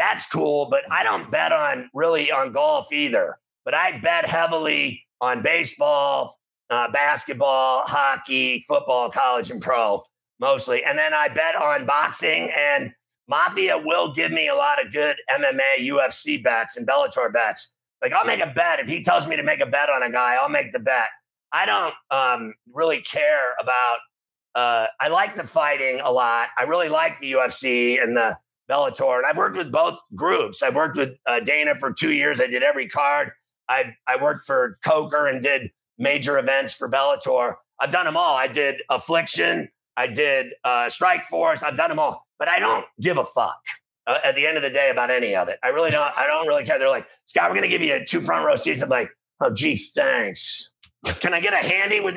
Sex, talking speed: male, 205 wpm